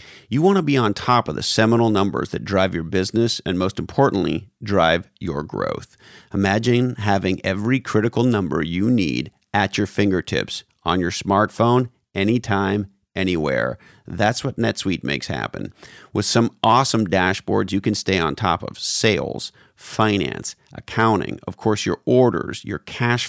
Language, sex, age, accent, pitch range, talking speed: English, male, 40-59, American, 95-120 Hz, 150 wpm